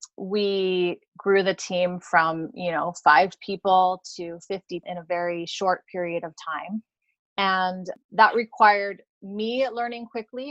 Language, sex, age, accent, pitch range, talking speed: English, female, 30-49, American, 185-230 Hz, 135 wpm